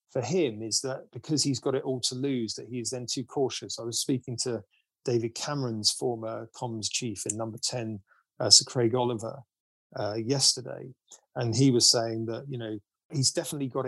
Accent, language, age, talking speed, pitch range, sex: British, English, 30-49, 190 wpm, 115-135 Hz, male